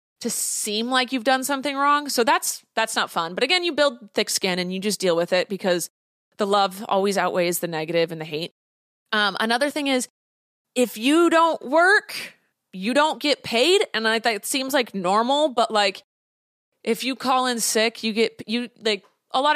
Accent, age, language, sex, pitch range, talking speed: American, 20-39, English, female, 180-235 Hz, 205 wpm